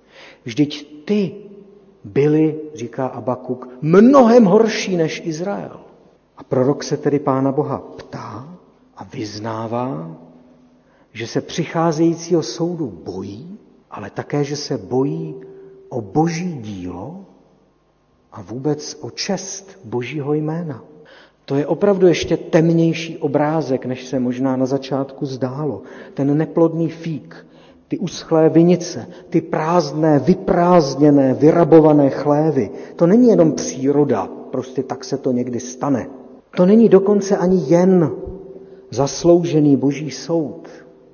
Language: Czech